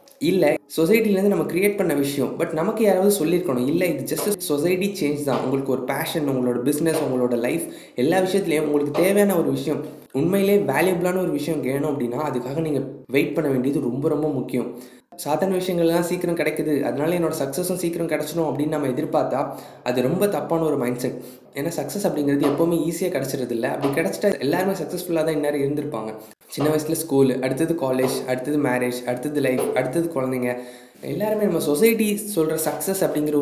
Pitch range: 140-175 Hz